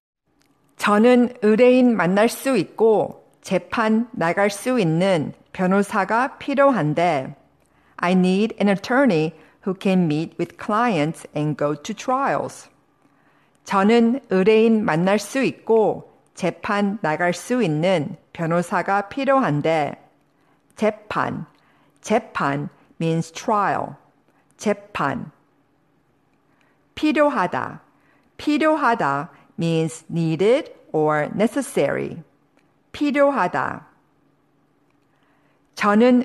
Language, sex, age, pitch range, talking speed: English, female, 50-69, 165-245 Hz, 80 wpm